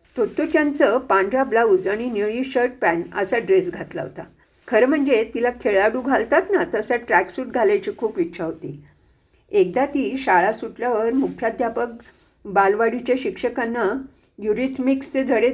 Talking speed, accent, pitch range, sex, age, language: 100 wpm, Indian, 215-275 Hz, female, 50-69, English